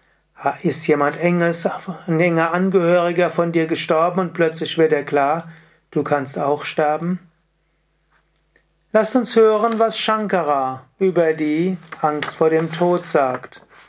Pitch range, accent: 155-185 Hz, German